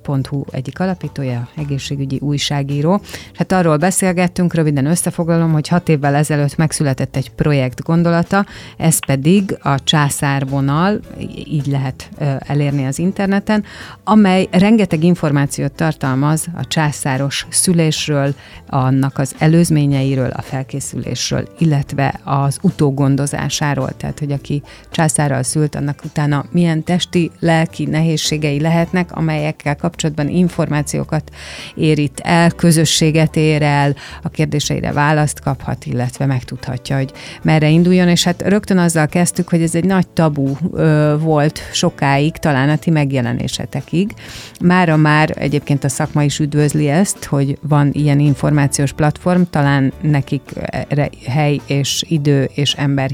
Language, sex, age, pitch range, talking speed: Hungarian, female, 30-49, 140-165 Hz, 120 wpm